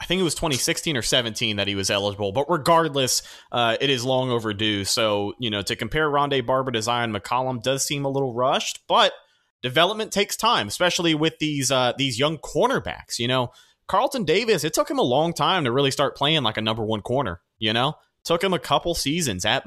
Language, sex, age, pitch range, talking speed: English, male, 30-49, 105-145 Hz, 215 wpm